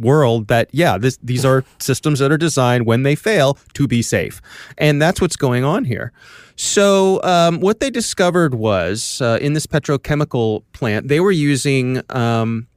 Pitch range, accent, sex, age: 110-140 Hz, American, male, 30-49